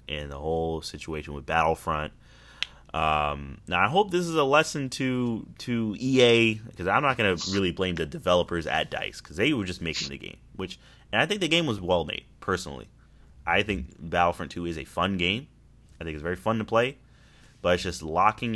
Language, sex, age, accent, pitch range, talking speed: English, male, 30-49, American, 85-120 Hz, 205 wpm